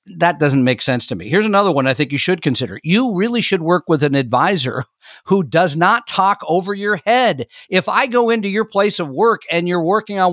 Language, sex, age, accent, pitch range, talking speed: English, male, 50-69, American, 140-195 Hz, 230 wpm